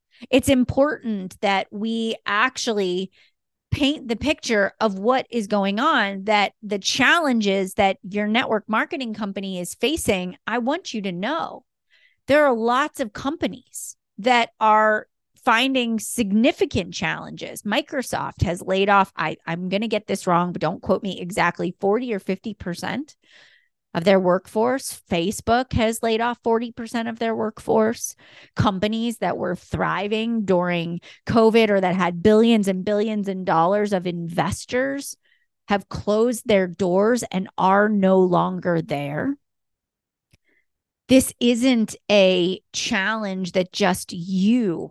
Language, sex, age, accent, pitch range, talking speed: English, female, 30-49, American, 190-235 Hz, 130 wpm